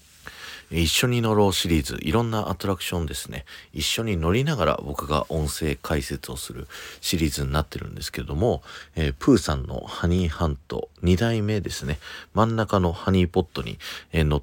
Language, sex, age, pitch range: Japanese, male, 40-59, 75-100 Hz